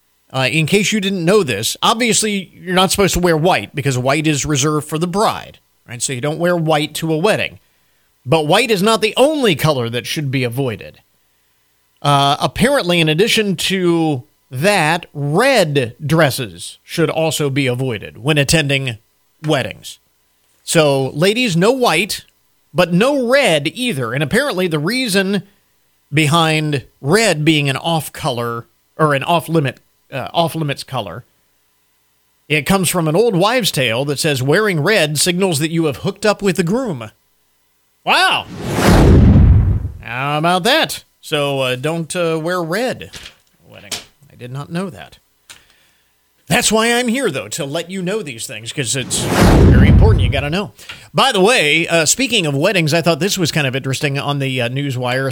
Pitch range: 135-185 Hz